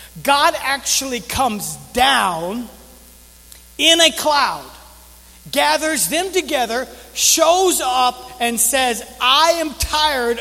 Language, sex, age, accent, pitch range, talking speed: English, male, 40-59, American, 220-290 Hz, 100 wpm